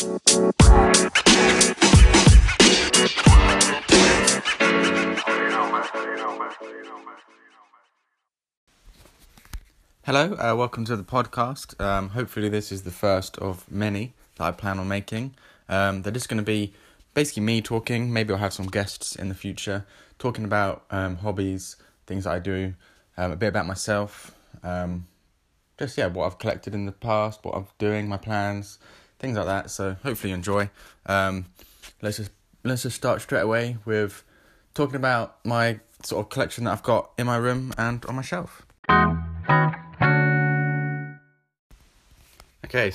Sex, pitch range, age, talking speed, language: male, 95-115 Hz, 20-39, 135 wpm, English